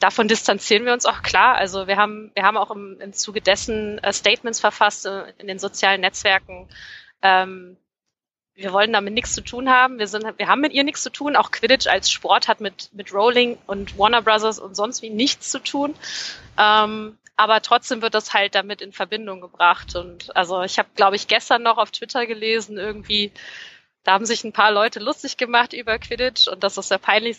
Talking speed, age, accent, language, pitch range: 205 wpm, 20-39, German, German, 195-235 Hz